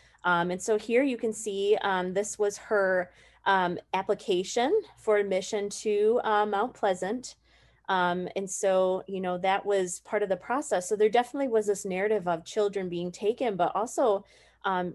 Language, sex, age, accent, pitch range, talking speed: English, female, 30-49, American, 180-220 Hz, 175 wpm